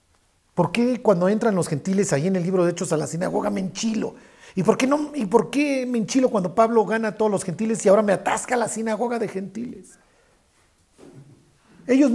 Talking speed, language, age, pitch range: 215 wpm, Spanish, 50-69, 165-230 Hz